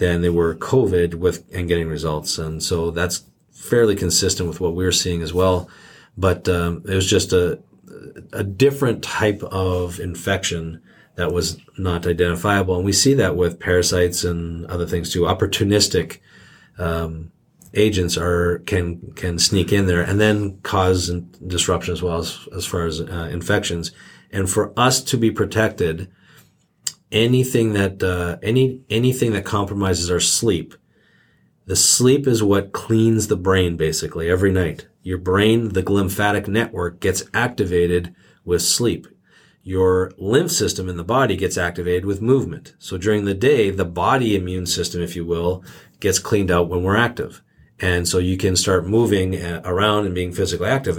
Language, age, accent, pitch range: English, 40-59, American, 85-105 Hz